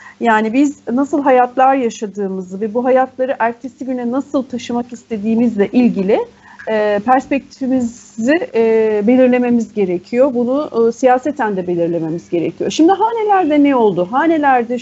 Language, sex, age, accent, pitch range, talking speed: Turkish, female, 40-59, native, 200-265 Hz, 110 wpm